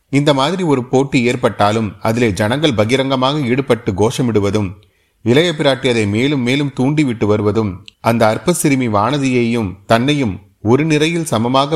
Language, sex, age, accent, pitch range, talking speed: Tamil, male, 30-49, native, 105-135 Hz, 120 wpm